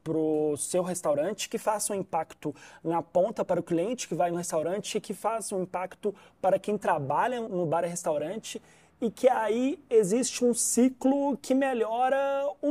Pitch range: 175-245 Hz